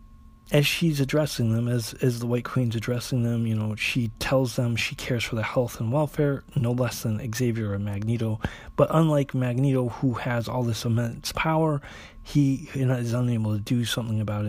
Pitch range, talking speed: 110-145 Hz, 195 wpm